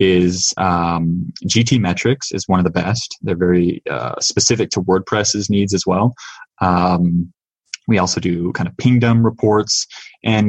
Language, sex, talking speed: English, male, 155 wpm